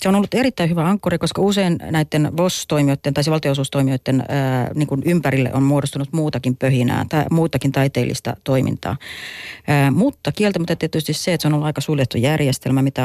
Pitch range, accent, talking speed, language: 125-150 Hz, native, 160 wpm, Finnish